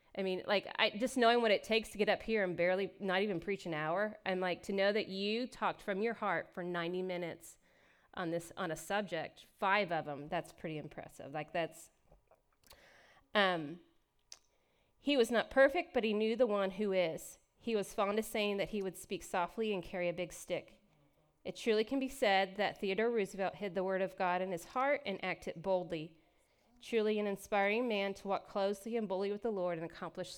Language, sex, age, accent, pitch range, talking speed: English, female, 30-49, American, 180-220 Hz, 210 wpm